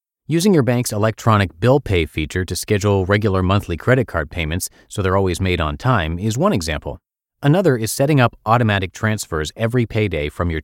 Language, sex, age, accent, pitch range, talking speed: English, male, 30-49, American, 85-120 Hz, 185 wpm